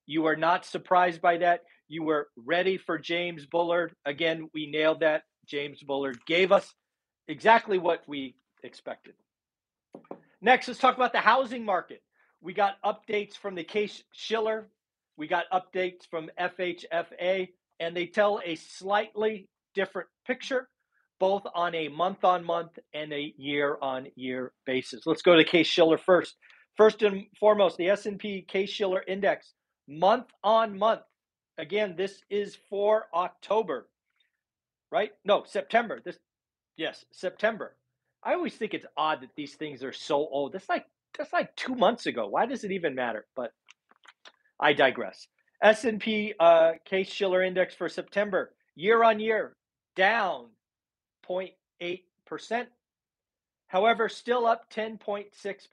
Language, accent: English, American